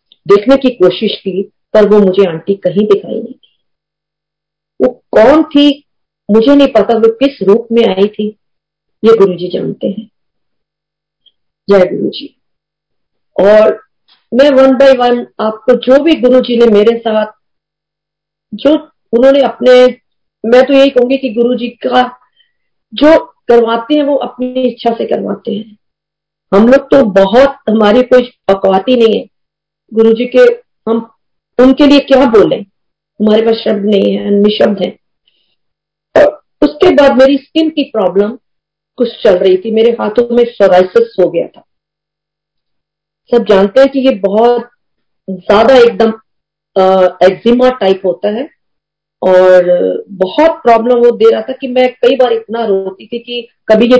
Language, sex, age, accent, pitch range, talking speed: Hindi, female, 50-69, native, 200-255 Hz, 150 wpm